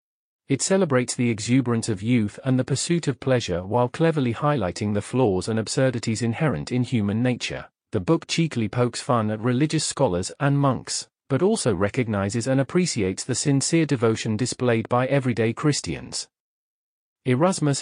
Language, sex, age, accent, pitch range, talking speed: English, male, 40-59, British, 115-140 Hz, 150 wpm